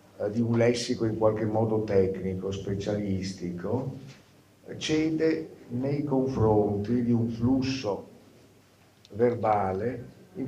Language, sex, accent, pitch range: Italian, male, native, 105-135 Hz